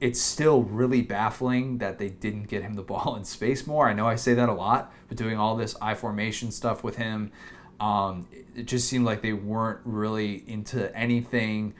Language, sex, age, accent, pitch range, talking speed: English, male, 20-39, American, 105-120 Hz, 200 wpm